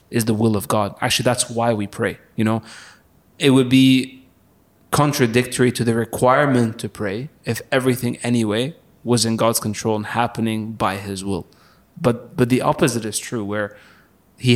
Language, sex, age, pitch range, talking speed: English, male, 20-39, 110-130 Hz, 170 wpm